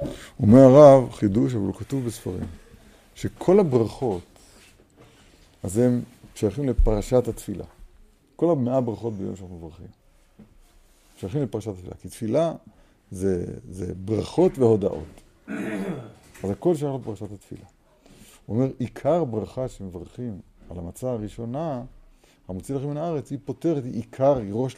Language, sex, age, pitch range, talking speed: Hebrew, male, 50-69, 100-135 Hz, 125 wpm